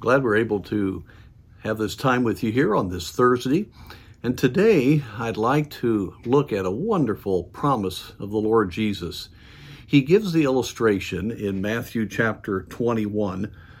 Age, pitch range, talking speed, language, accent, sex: 50-69, 100-125 Hz, 150 wpm, English, American, male